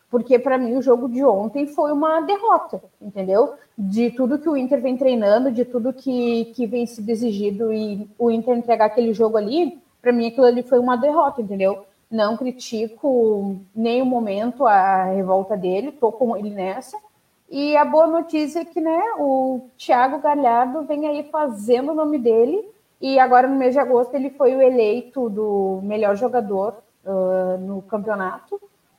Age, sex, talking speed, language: 30-49, female, 175 wpm, Portuguese